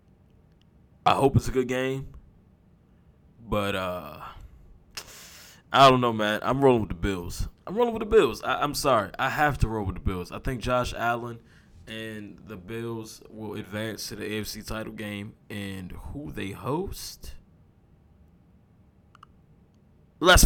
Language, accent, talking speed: English, American, 145 wpm